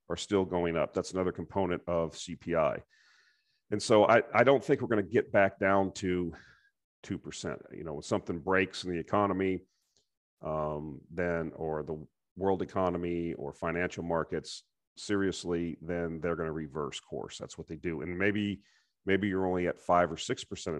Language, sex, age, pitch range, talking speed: English, male, 40-59, 85-100 Hz, 175 wpm